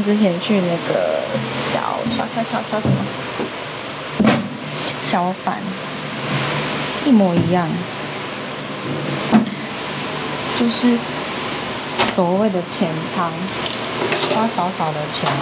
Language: Chinese